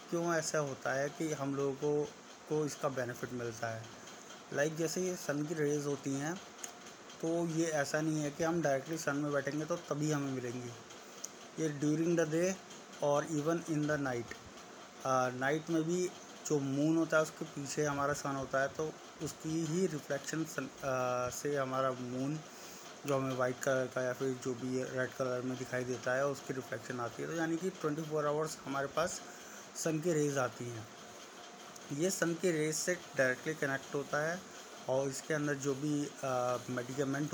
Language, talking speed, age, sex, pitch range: Hindi, 180 wpm, 20-39, male, 135-160 Hz